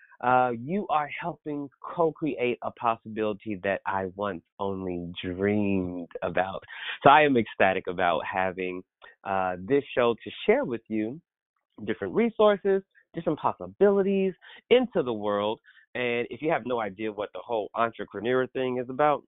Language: English